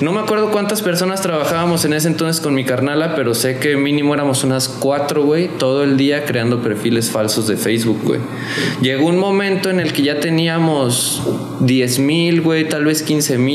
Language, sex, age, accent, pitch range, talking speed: Spanish, male, 20-39, Mexican, 130-165 Hz, 190 wpm